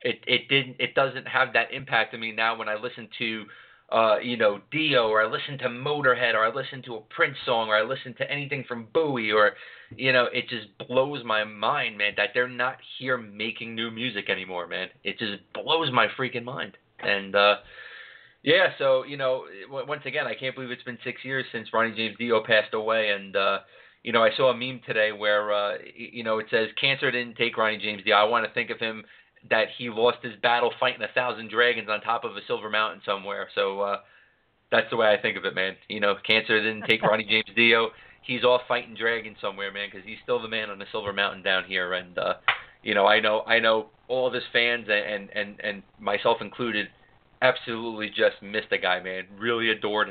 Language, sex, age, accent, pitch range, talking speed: English, male, 30-49, American, 105-125 Hz, 225 wpm